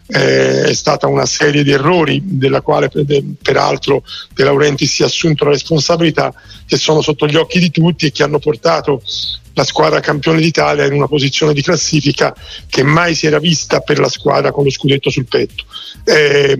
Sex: male